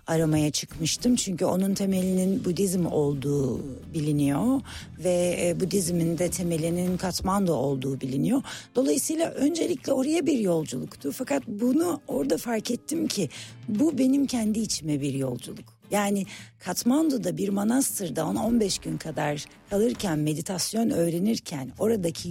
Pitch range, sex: 155-240 Hz, female